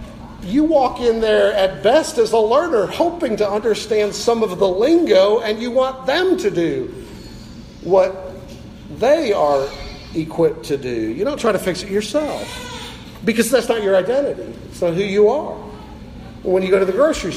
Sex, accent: male, American